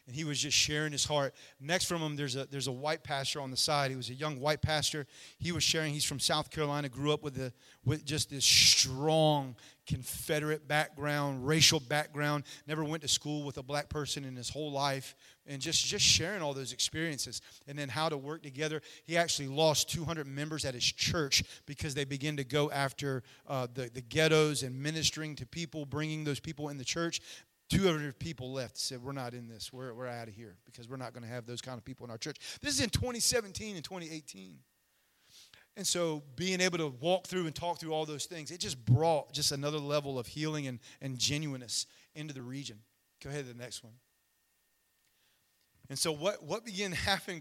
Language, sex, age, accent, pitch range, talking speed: English, male, 30-49, American, 130-155 Hz, 215 wpm